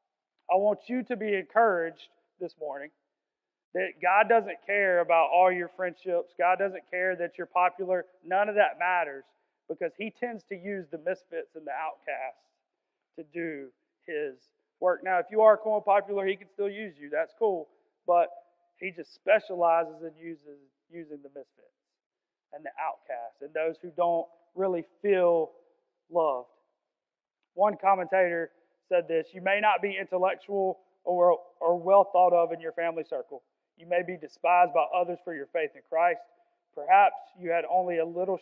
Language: English